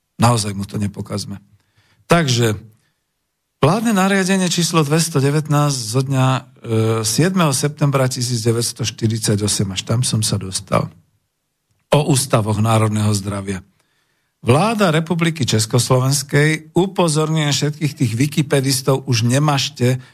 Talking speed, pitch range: 95 wpm, 110-145 Hz